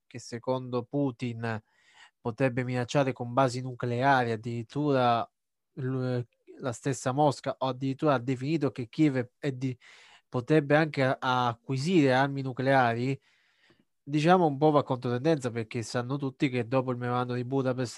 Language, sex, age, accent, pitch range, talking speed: Italian, male, 20-39, native, 120-140 Hz, 130 wpm